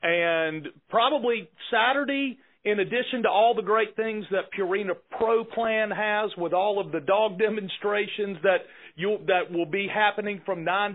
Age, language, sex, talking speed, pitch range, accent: 40-59, English, male, 160 wpm, 170-210 Hz, American